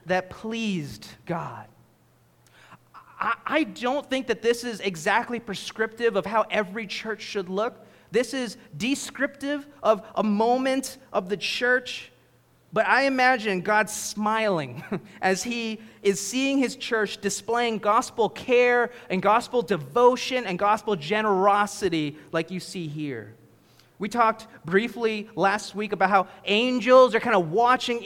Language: English